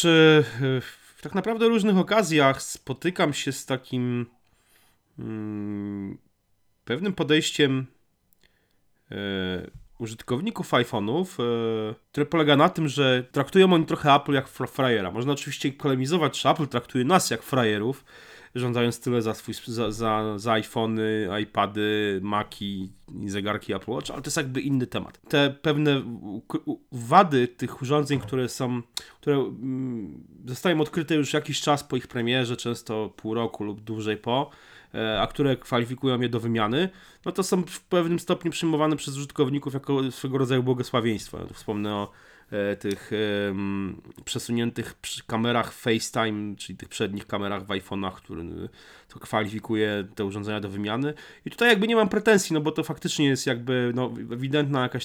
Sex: male